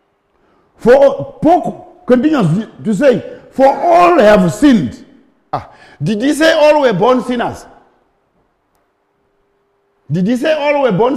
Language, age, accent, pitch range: English, 50-69, French, 200-290 Hz